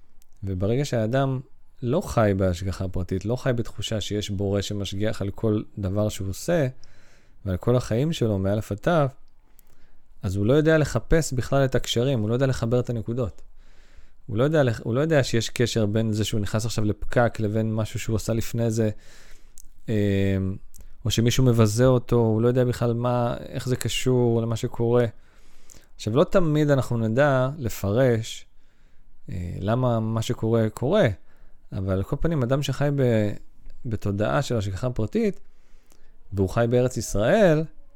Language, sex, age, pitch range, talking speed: Hebrew, male, 20-39, 100-130 Hz, 150 wpm